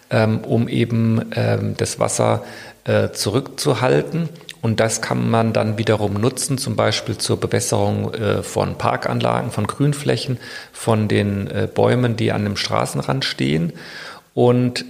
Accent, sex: German, male